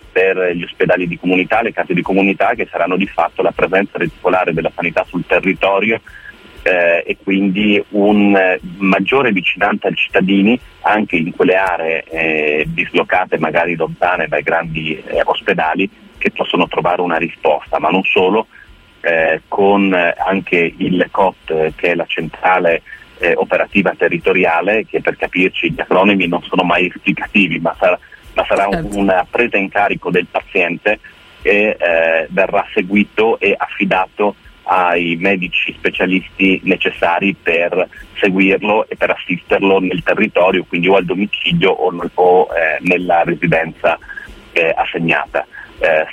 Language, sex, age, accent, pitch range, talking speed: Italian, male, 30-49, native, 85-95 Hz, 145 wpm